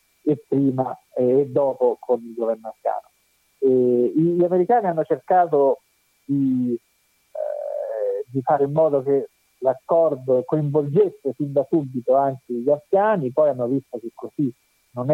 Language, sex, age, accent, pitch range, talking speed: Italian, male, 50-69, native, 125-155 Hz, 130 wpm